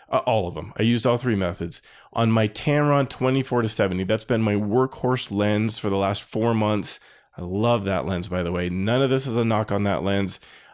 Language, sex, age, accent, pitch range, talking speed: English, male, 20-39, American, 95-125 Hz, 225 wpm